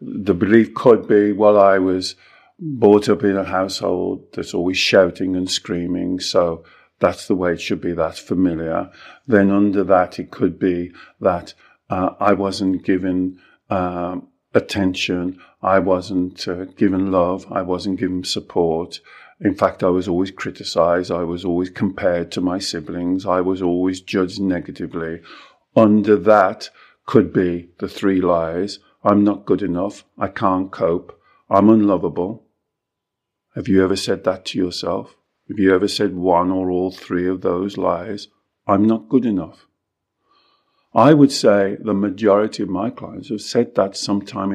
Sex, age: male, 50-69